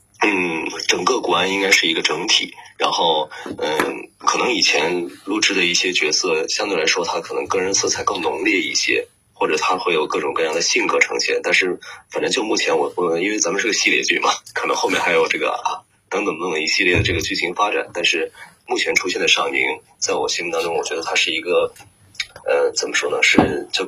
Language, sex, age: Chinese, male, 20-39